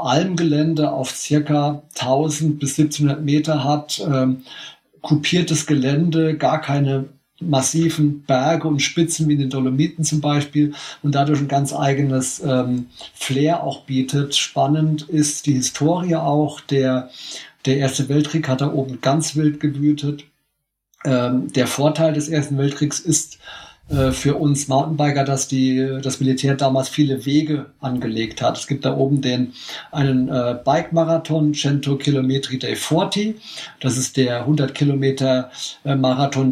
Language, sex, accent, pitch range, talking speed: German, male, German, 135-155 Hz, 135 wpm